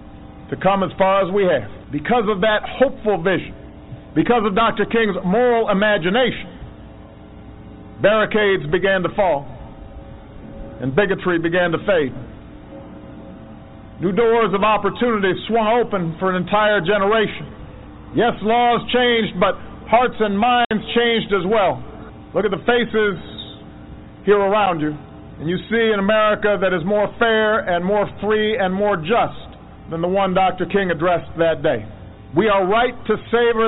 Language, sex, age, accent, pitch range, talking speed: English, male, 50-69, American, 170-220 Hz, 145 wpm